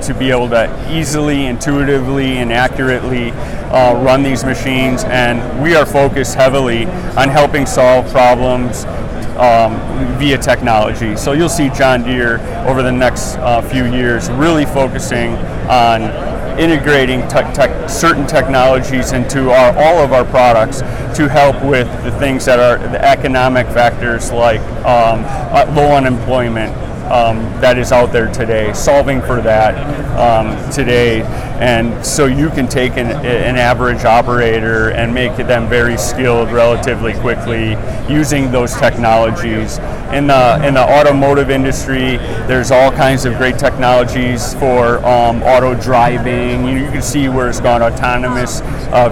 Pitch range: 120-135 Hz